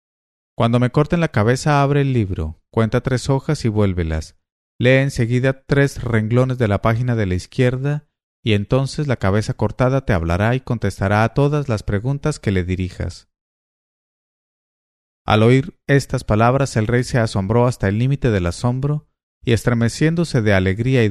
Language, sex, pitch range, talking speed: English, male, 95-130 Hz, 165 wpm